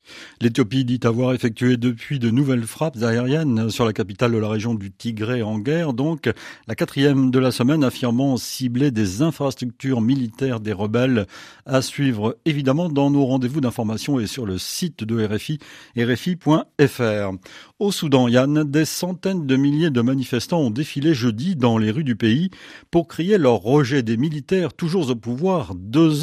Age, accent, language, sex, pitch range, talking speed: 40-59, French, French, male, 120-165 Hz, 170 wpm